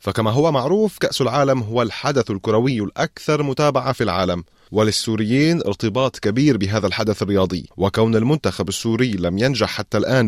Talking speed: 145 wpm